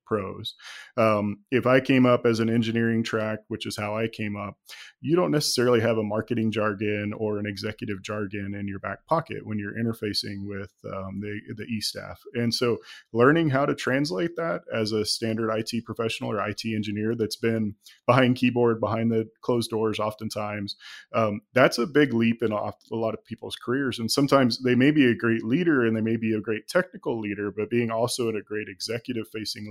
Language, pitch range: English, 105-120 Hz